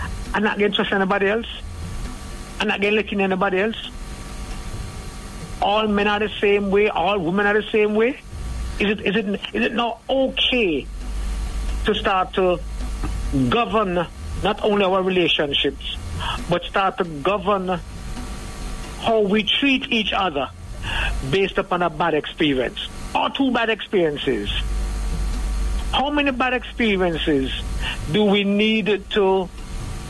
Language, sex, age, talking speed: English, male, 60-79, 130 wpm